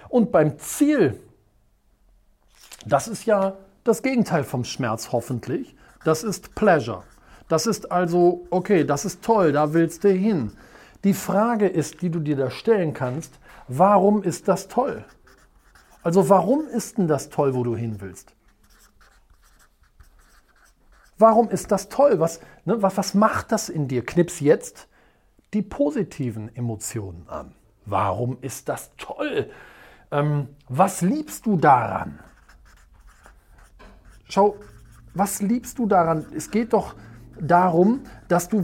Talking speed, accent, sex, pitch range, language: 135 wpm, German, male, 135-205 Hz, German